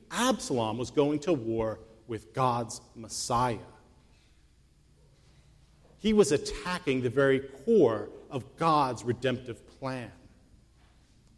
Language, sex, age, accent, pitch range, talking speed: English, male, 40-59, American, 110-155 Hz, 95 wpm